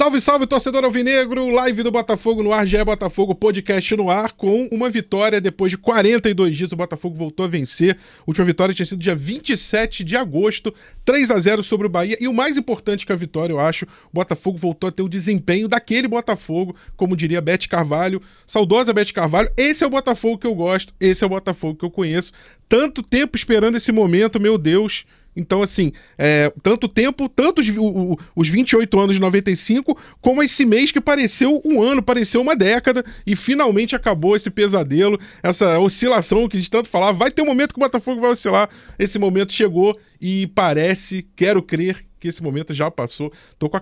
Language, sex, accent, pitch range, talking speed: Portuguese, male, Brazilian, 170-220 Hz, 200 wpm